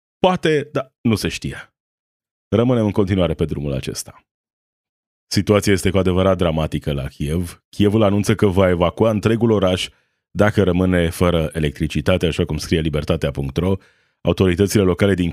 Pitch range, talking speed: 80-100 Hz, 140 wpm